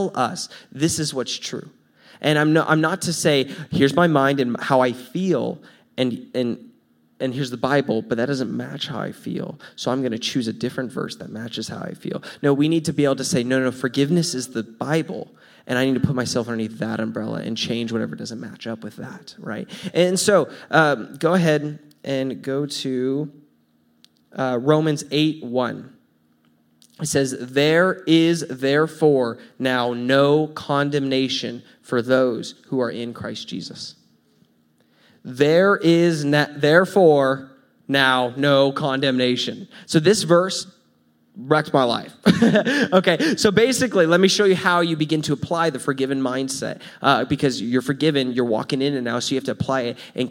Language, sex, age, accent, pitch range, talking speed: English, male, 20-39, American, 125-160 Hz, 175 wpm